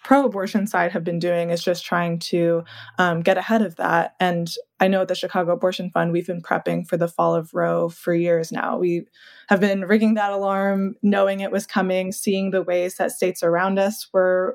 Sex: female